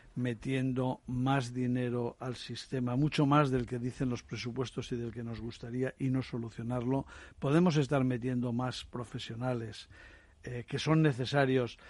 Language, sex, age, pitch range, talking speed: Spanish, male, 60-79, 120-140 Hz, 145 wpm